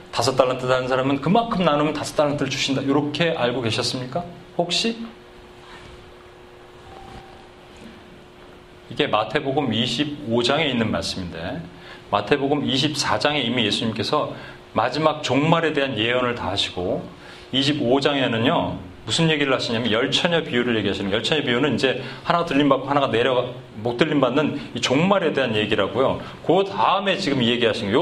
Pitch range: 125-170 Hz